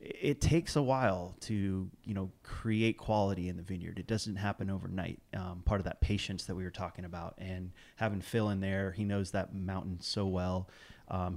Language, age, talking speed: English, 30-49, 200 wpm